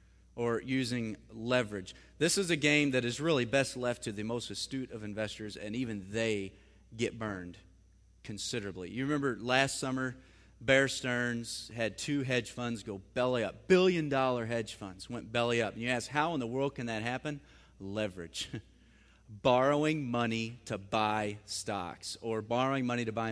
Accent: American